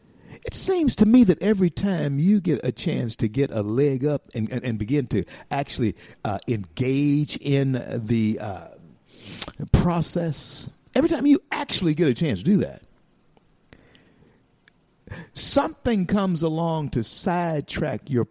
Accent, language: American, English